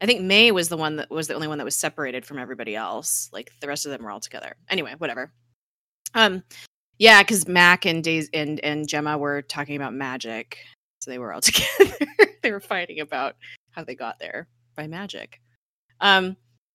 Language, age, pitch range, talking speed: English, 20-39, 140-190 Hz, 205 wpm